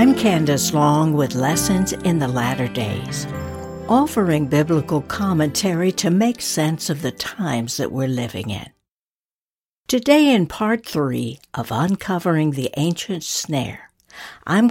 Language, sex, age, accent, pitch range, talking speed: English, female, 60-79, American, 140-195 Hz, 130 wpm